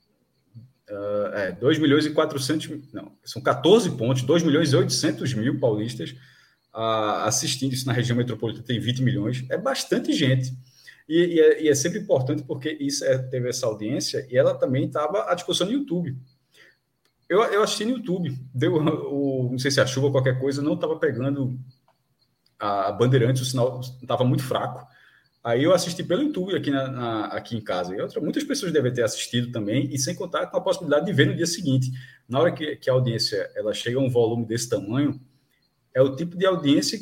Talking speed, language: 190 wpm, Portuguese